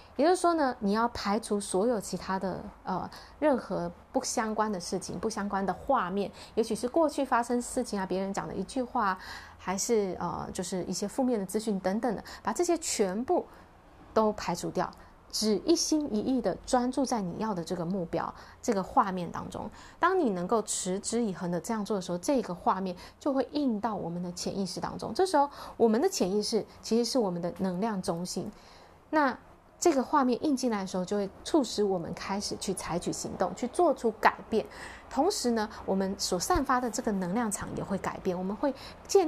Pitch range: 185-245 Hz